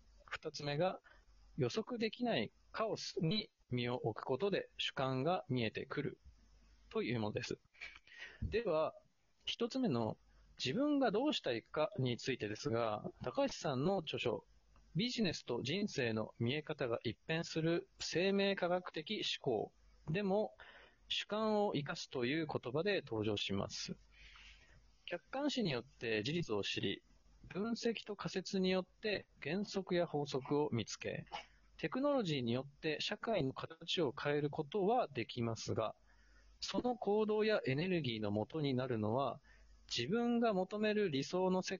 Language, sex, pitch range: Japanese, male, 125-200 Hz